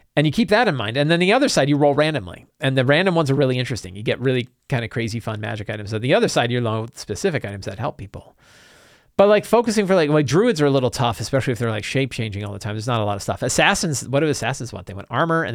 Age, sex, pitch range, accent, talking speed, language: 40-59, male, 110-145 Hz, American, 295 wpm, English